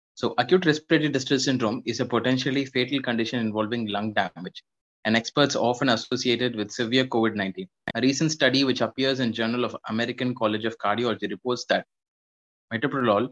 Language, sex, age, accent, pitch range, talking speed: English, male, 20-39, Indian, 115-135 Hz, 160 wpm